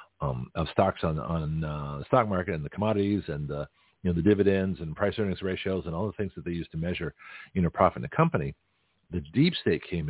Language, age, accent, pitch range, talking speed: English, 50-69, American, 85-100 Hz, 245 wpm